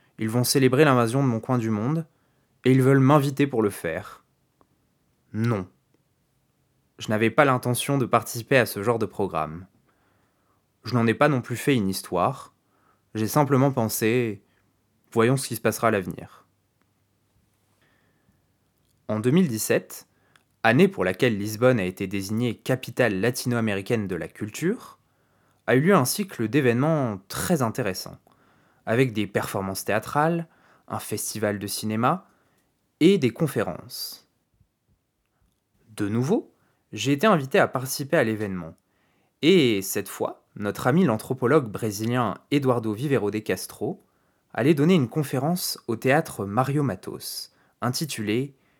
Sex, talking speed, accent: male, 135 wpm, French